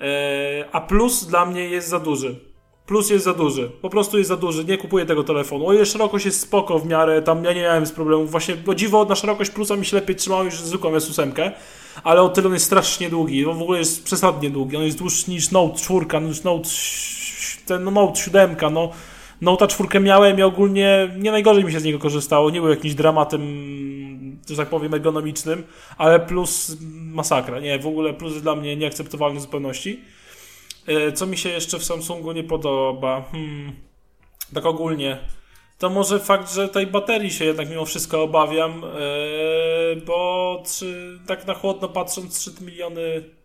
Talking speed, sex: 185 wpm, male